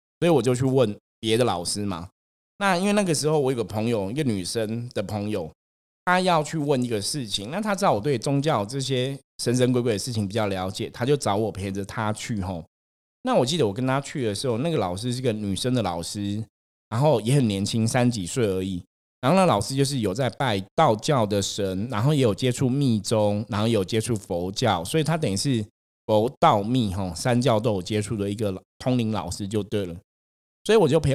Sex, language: male, Chinese